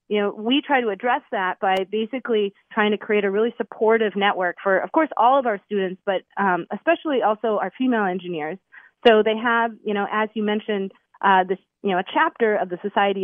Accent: American